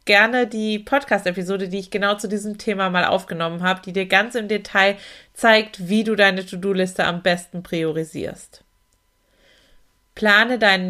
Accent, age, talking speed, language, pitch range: German, 30-49, 150 wpm, German, 195-235 Hz